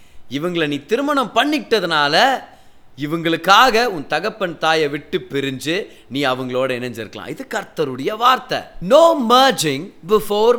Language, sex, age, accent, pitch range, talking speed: Tamil, male, 30-49, native, 155-250 Hz, 110 wpm